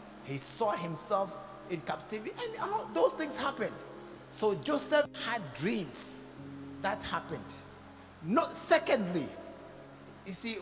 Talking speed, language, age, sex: 115 wpm, English, 50-69, male